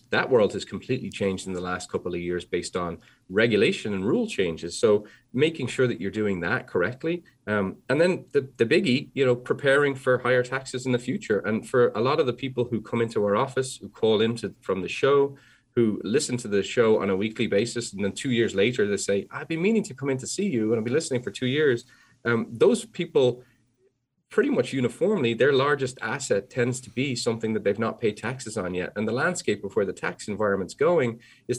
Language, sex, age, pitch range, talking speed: English, male, 30-49, 105-130 Hz, 230 wpm